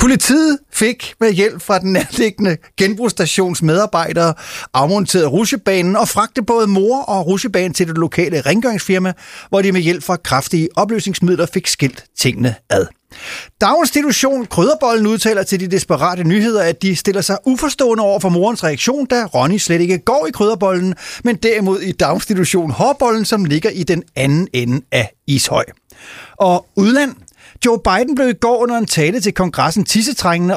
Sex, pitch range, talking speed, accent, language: male, 160-220 Hz, 155 wpm, native, Danish